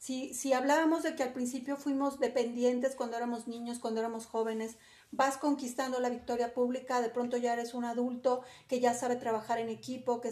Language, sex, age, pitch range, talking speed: Spanish, female, 40-59, 235-270 Hz, 190 wpm